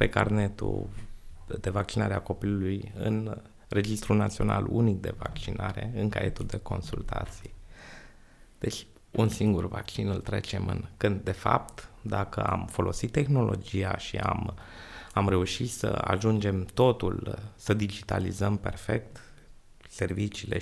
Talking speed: 120 wpm